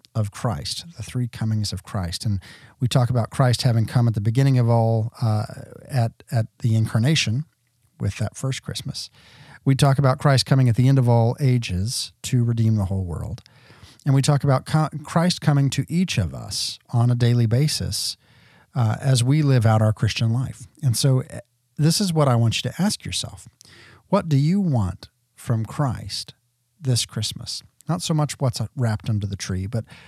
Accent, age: American, 50-69